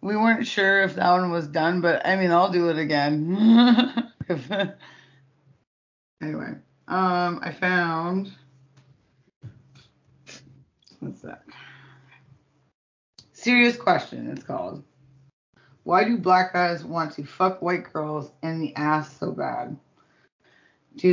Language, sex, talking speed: English, female, 115 wpm